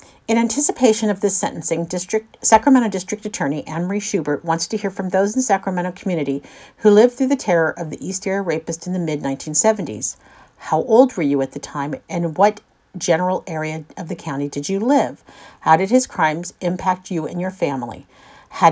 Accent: American